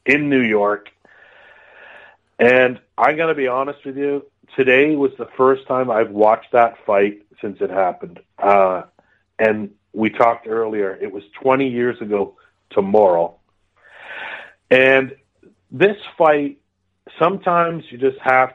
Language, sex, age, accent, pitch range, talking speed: English, male, 40-59, American, 100-135 Hz, 135 wpm